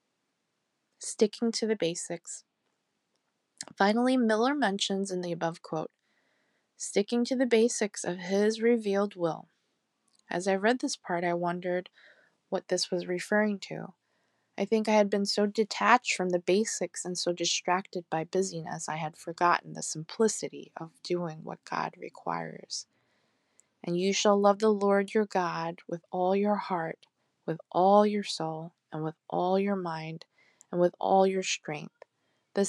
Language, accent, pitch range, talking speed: English, American, 175-220 Hz, 150 wpm